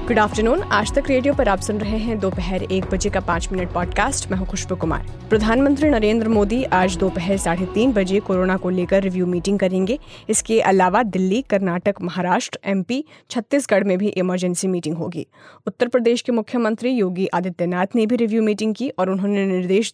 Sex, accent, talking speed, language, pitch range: female, native, 185 wpm, Hindi, 185-220 Hz